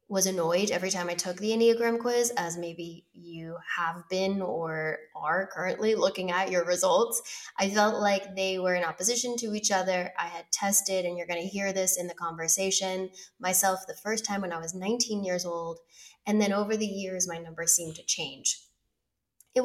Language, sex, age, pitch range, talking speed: English, female, 10-29, 175-205 Hz, 195 wpm